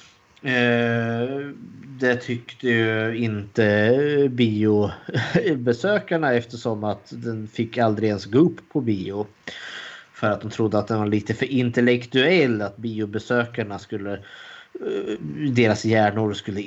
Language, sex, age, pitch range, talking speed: Swedish, male, 20-39, 105-125 Hz, 105 wpm